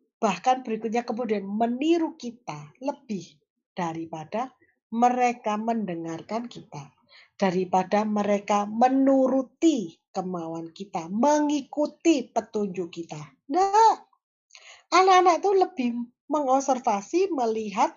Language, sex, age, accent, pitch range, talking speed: Indonesian, female, 40-59, native, 210-315 Hz, 80 wpm